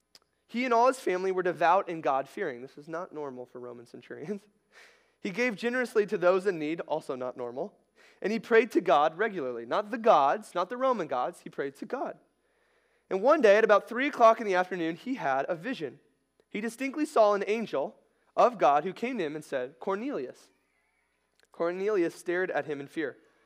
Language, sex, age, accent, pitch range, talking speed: English, male, 20-39, American, 150-225 Hz, 195 wpm